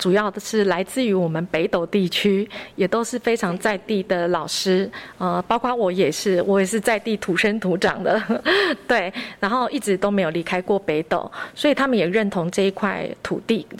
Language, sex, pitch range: Chinese, female, 185-225 Hz